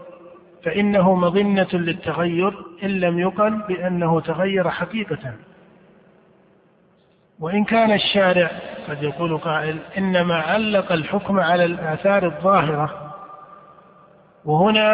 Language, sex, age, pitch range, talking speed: Arabic, male, 50-69, 170-195 Hz, 90 wpm